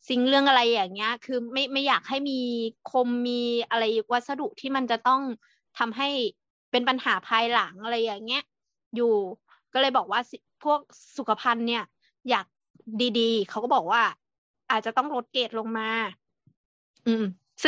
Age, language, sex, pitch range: 20-39, Thai, female, 220-265 Hz